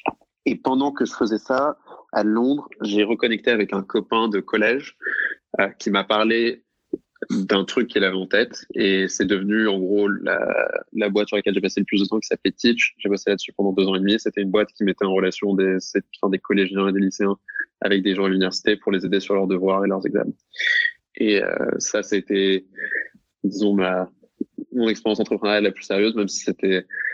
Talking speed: 210 wpm